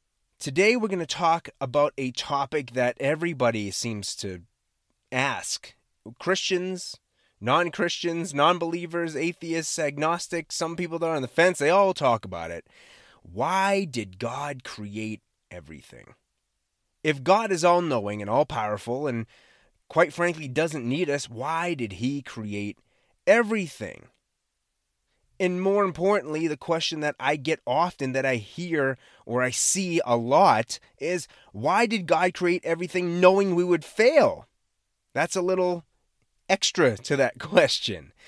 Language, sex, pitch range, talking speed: English, male, 125-185 Hz, 135 wpm